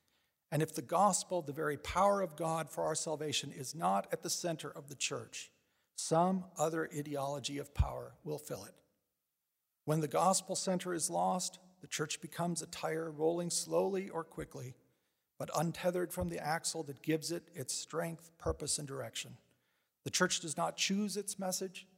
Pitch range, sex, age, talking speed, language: 145-175 Hz, male, 40-59, 170 wpm, English